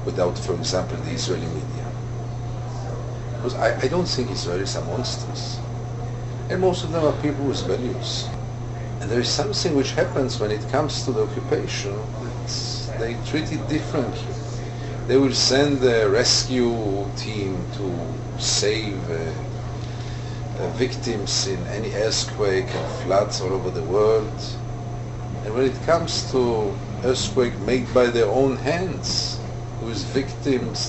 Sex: male